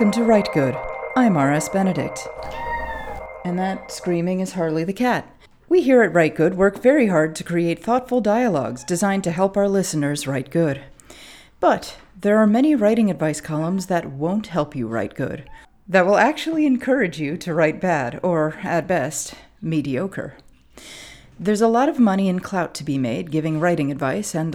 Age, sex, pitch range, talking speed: 40-59, female, 155-210 Hz, 175 wpm